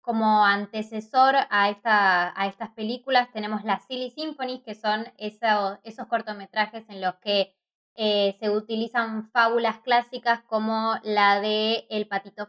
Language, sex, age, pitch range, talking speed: Spanish, female, 20-39, 210-285 Hz, 135 wpm